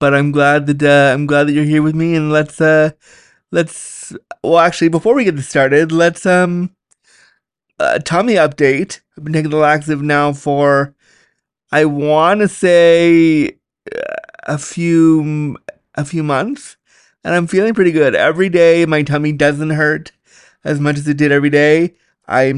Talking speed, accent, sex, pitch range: 165 wpm, American, male, 140-165 Hz